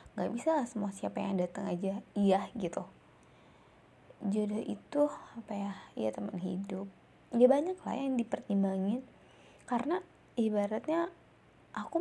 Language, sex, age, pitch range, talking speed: Indonesian, female, 20-39, 195-245 Hz, 130 wpm